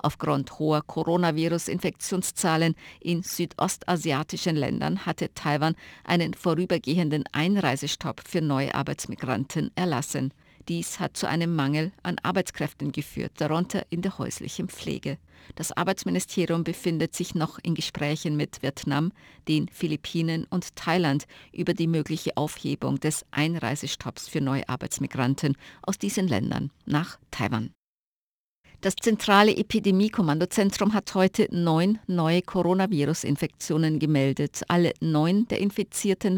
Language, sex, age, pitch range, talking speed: German, female, 50-69, 145-180 Hz, 110 wpm